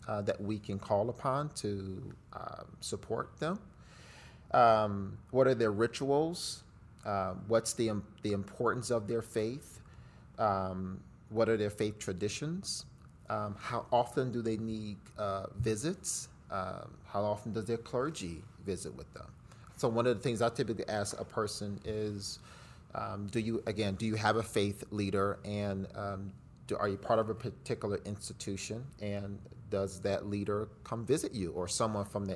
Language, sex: English, male